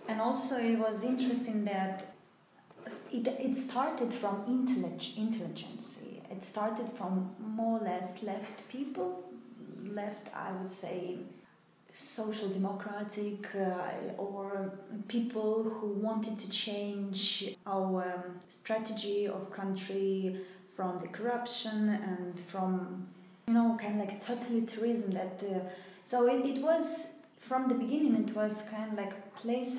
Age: 20-39